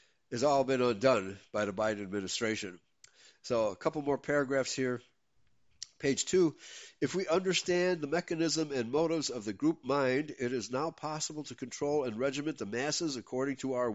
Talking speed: 170 wpm